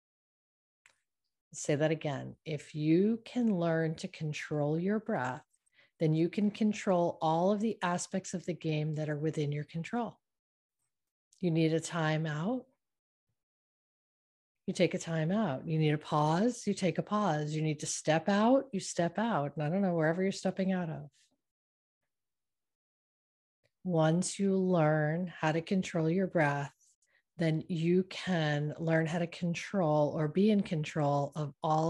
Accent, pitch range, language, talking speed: American, 150-185 Hz, English, 155 wpm